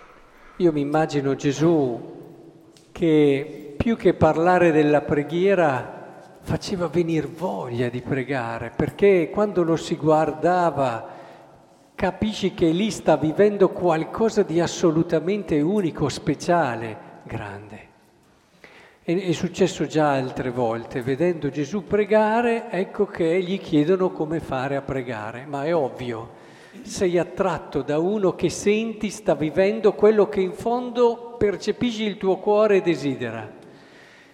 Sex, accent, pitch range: male, native, 145-205 Hz